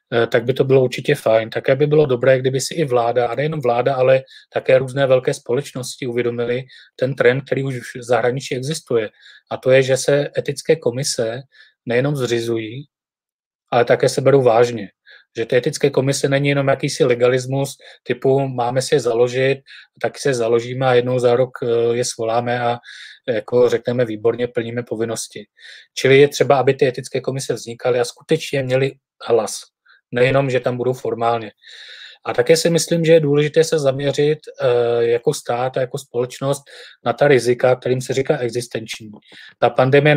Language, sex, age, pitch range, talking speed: Czech, male, 30-49, 120-140 Hz, 165 wpm